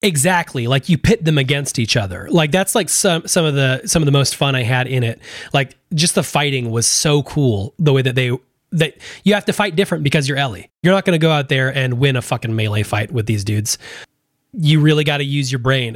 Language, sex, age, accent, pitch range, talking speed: English, male, 30-49, American, 120-155 Hz, 250 wpm